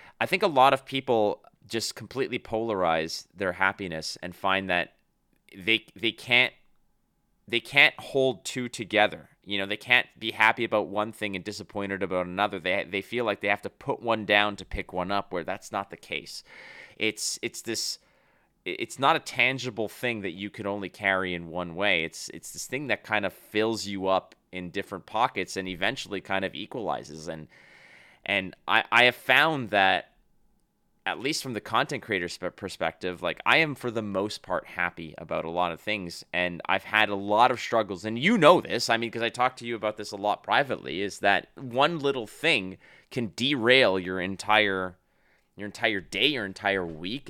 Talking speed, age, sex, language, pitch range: 195 wpm, 30-49, male, English, 95-115 Hz